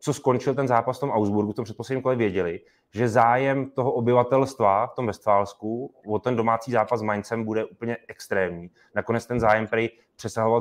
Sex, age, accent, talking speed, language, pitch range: male, 20-39, native, 180 wpm, Czech, 105-125 Hz